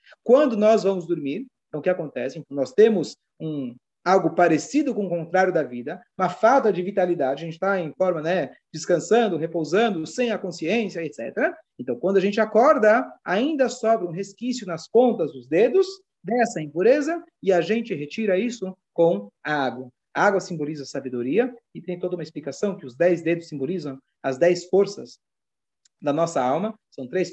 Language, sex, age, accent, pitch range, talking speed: Portuguese, male, 40-59, Brazilian, 150-215 Hz, 175 wpm